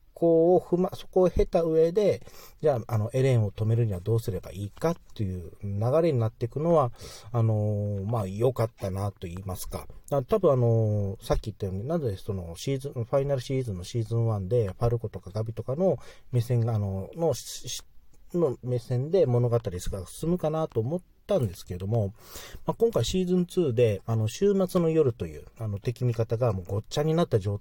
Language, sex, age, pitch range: Japanese, male, 40-59, 105-160 Hz